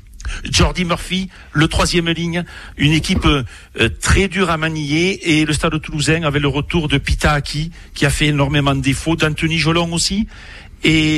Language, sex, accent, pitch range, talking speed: French, male, French, 140-170 Hz, 160 wpm